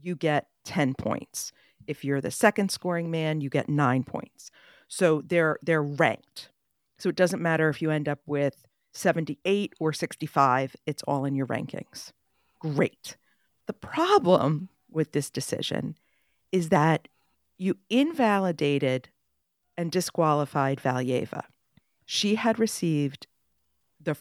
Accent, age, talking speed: American, 50-69, 130 wpm